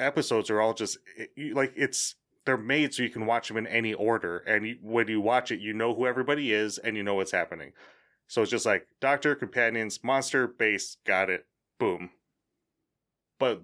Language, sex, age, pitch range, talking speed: English, male, 30-49, 110-140 Hz, 205 wpm